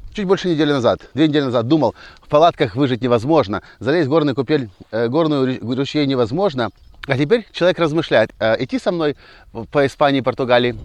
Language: Russian